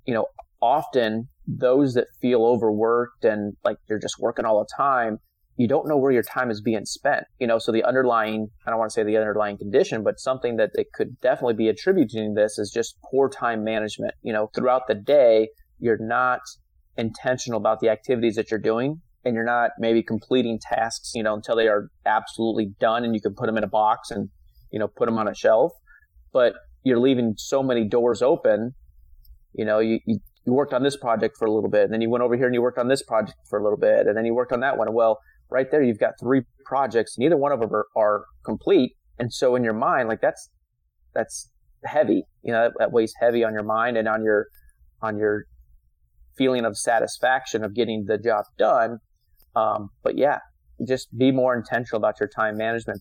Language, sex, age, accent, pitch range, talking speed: English, male, 30-49, American, 105-125 Hz, 215 wpm